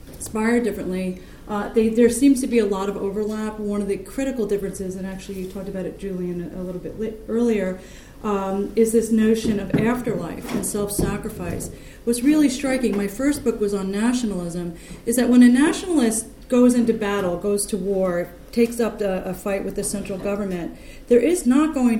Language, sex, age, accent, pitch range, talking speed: English, female, 40-59, American, 190-240 Hz, 185 wpm